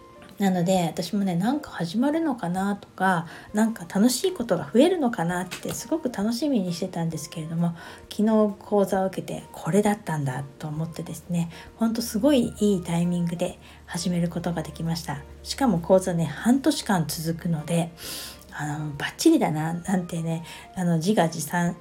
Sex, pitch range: female, 165-215 Hz